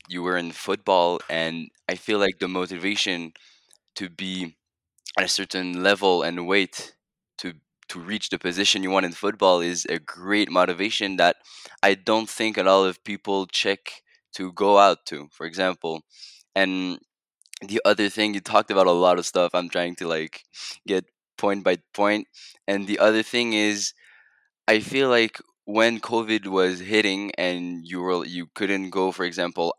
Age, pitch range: 20-39, 90-105 Hz